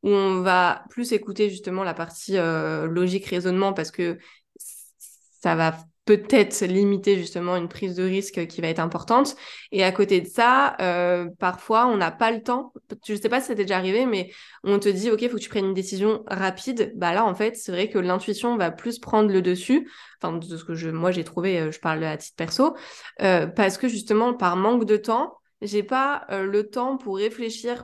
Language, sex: French, female